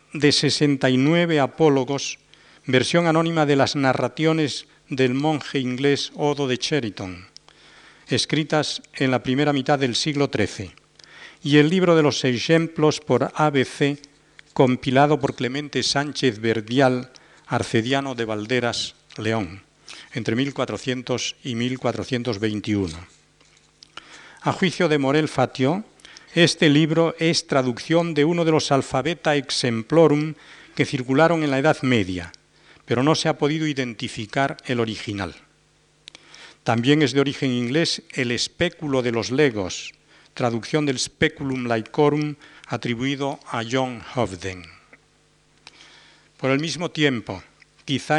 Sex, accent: male, Spanish